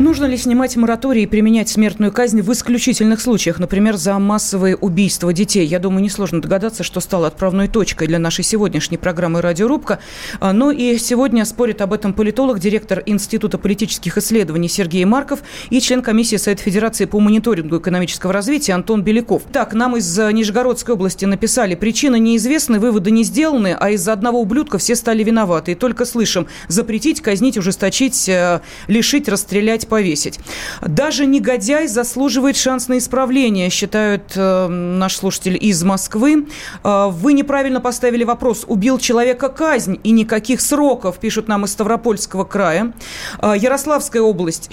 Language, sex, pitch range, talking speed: Russian, female, 195-245 Hz, 150 wpm